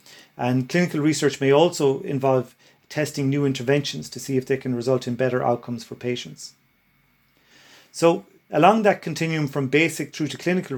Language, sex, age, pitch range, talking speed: English, male, 40-59, 130-150 Hz, 160 wpm